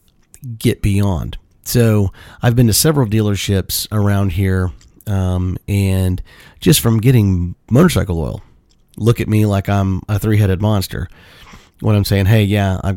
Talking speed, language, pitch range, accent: 145 wpm, English, 95-115 Hz, American